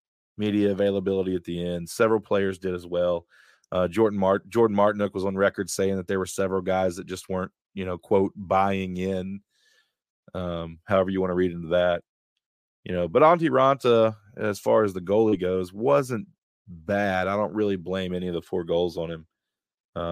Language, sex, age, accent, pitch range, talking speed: English, male, 20-39, American, 90-105 Hz, 195 wpm